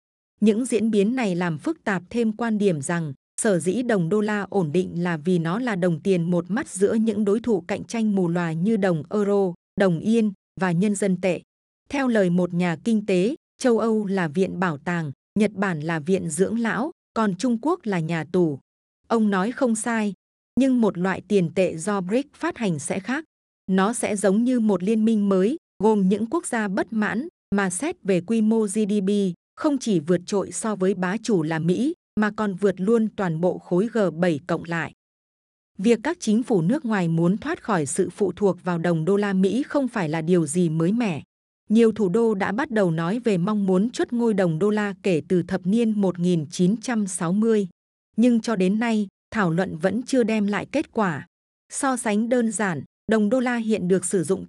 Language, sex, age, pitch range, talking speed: Vietnamese, female, 20-39, 185-225 Hz, 210 wpm